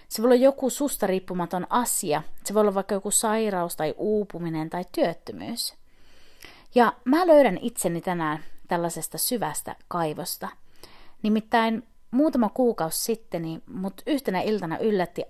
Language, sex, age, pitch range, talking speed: Finnish, female, 30-49, 175-240 Hz, 130 wpm